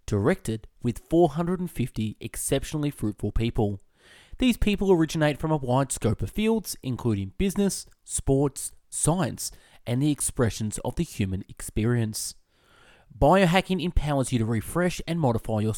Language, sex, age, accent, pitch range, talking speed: English, male, 20-39, Australian, 105-150 Hz, 130 wpm